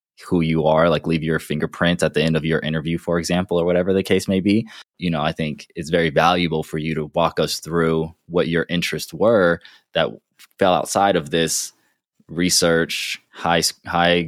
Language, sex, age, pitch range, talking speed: English, male, 20-39, 80-90 Hz, 195 wpm